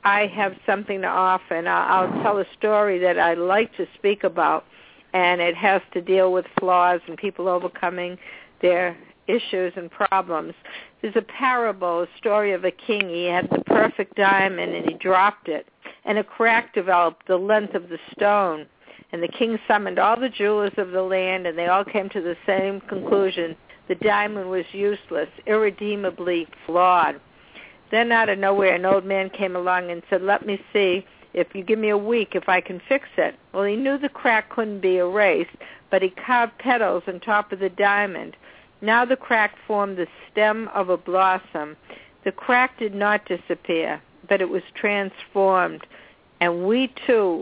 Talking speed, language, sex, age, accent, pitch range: 180 wpm, English, female, 60-79, American, 180-215 Hz